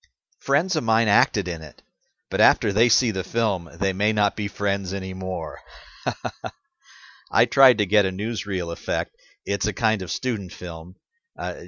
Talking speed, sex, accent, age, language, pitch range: 165 wpm, male, American, 50-69, English, 90-115 Hz